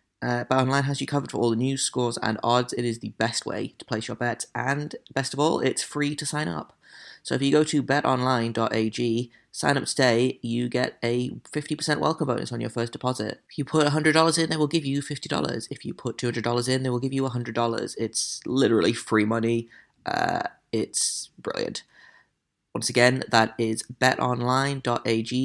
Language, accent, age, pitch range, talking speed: English, British, 20-39, 115-135 Hz, 190 wpm